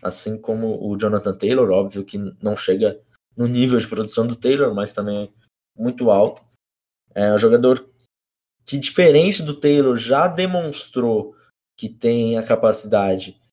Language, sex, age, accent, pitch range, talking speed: Portuguese, male, 20-39, Brazilian, 110-130 Hz, 145 wpm